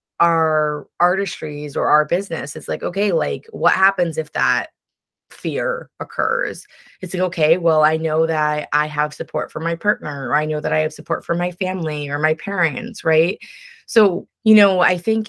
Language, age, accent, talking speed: English, 20-39, American, 185 wpm